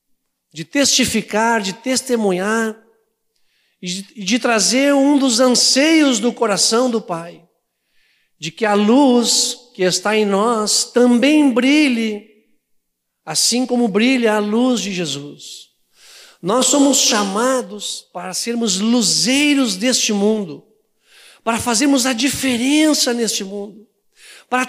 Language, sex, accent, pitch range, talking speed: Portuguese, male, Brazilian, 185-275 Hz, 110 wpm